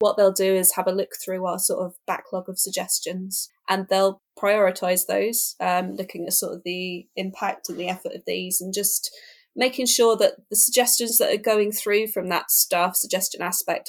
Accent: British